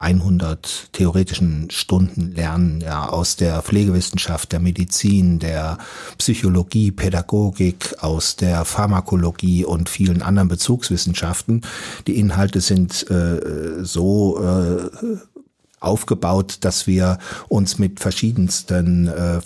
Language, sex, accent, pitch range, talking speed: German, male, German, 95-110 Hz, 100 wpm